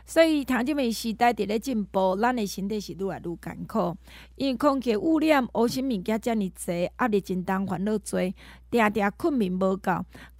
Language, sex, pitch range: Chinese, female, 195-270 Hz